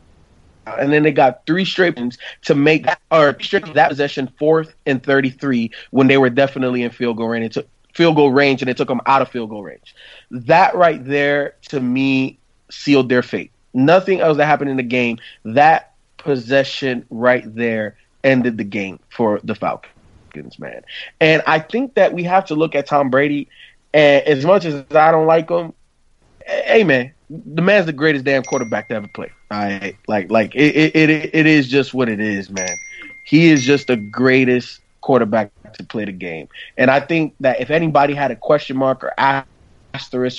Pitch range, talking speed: 125-155 Hz, 195 wpm